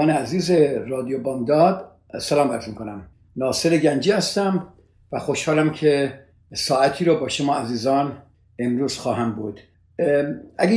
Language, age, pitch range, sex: Persian, 60-79, 135-180 Hz, male